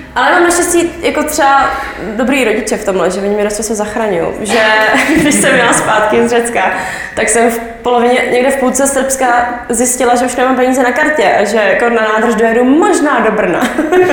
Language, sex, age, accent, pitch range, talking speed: Czech, female, 20-39, native, 220-255 Hz, 190 wpm